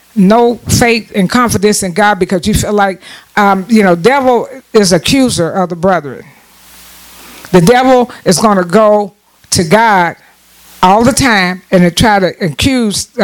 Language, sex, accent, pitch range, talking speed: English, female, American, 195-250 Hz, 155 wpm